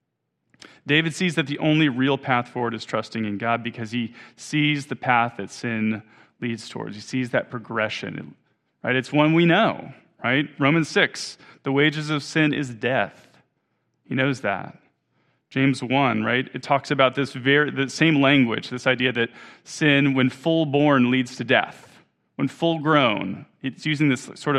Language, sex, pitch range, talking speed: English, male, 115-145 Hz, 165 wpm